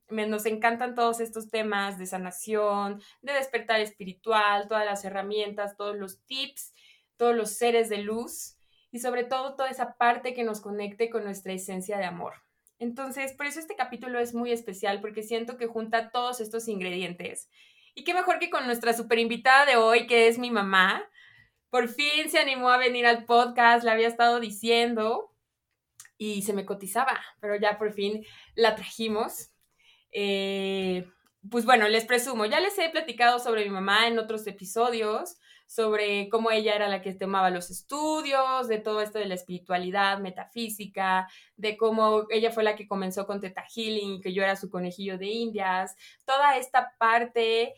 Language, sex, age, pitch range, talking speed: Spanish, female, 20-39, 205-250 Hz, 170 wpm